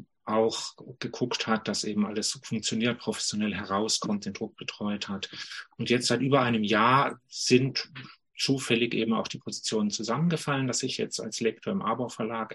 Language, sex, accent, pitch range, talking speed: German, male, German, 110-140 Hz, 160 wpm